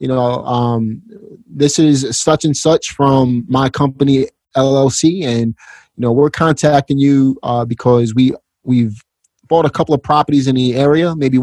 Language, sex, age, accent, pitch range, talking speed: English, male, 30-49, American, 120-145 Hz, 165 wpm